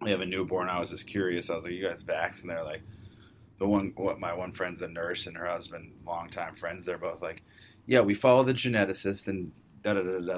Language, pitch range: English, 90-110 Hz